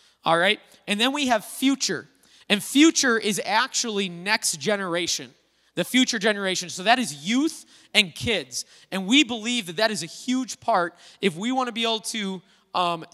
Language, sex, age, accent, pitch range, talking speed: English, male, 20-39, American, 185-230 Hz, 180 wpm